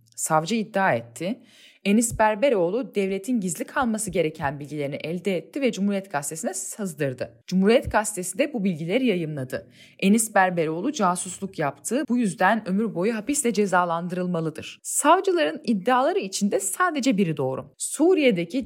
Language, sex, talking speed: Turkish, female, 125 wpm